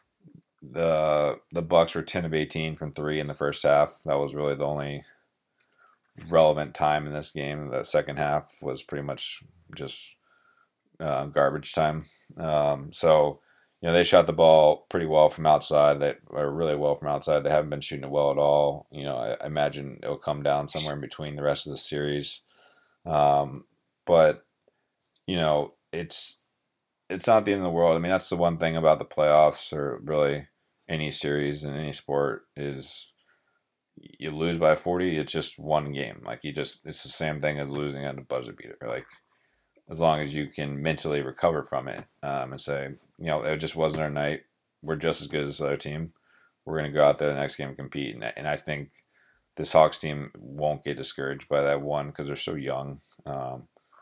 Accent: American